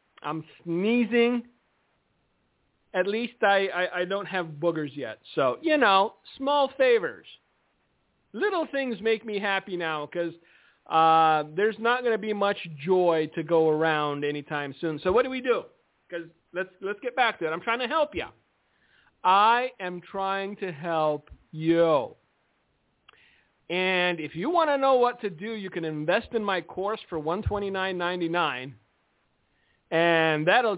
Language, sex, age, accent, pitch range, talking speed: English, male, 40-59, American, 160-220 Hz, 150 wpm